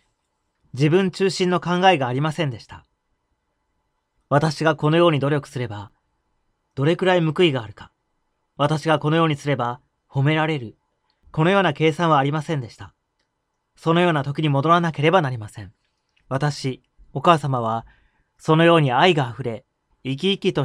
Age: 30-49